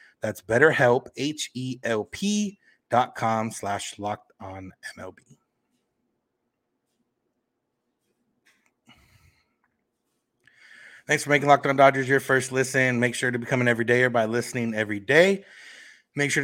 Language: English